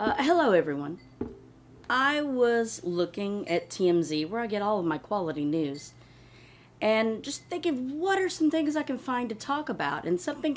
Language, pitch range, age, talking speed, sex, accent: English, 160-220 Hz, 30-49, 175 wpm, female, American